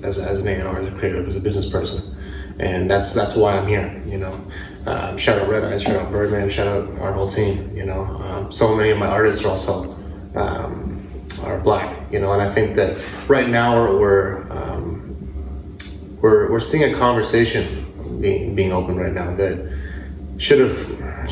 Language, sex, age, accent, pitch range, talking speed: English, male, 20-39, American, 95-105 Hz, 190 wpm